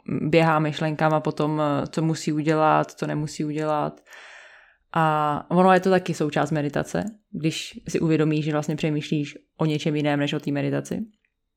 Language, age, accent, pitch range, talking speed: Czech, 20-39, native, 155-180 Hz, 155 wpm